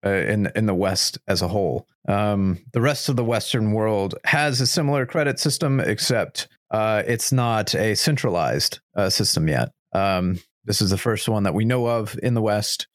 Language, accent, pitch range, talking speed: English, American, 100-130 Hz, 195 wpm